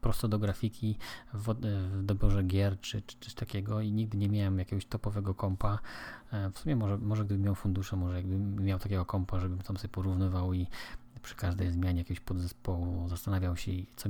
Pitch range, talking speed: 95-110 Hz, 185 wpm